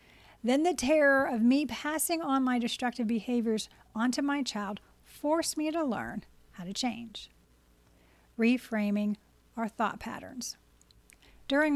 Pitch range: 215-265 Hz